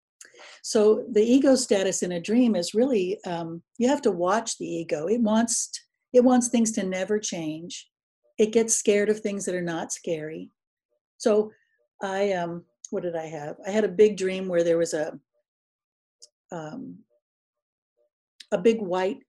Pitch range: 180-235 Hz